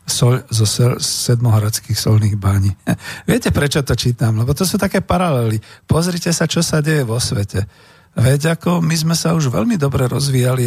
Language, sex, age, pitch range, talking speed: Slovak, male, 50-69, 110-130 Hz, 170 wpm